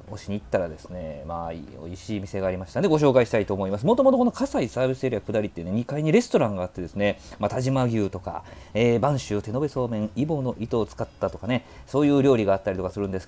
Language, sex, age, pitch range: Japanese, male, 40-59, 95-140 Hz